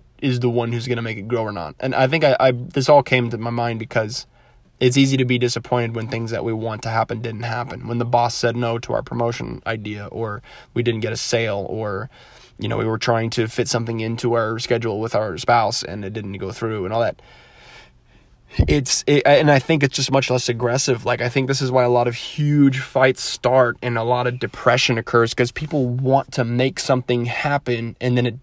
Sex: male